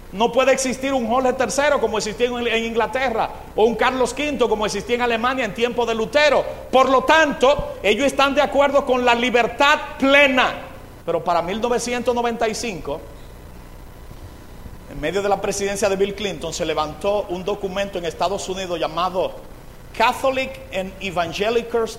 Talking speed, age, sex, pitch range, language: 150 wpm, 50-69, male, 190-265 Hz, Spanish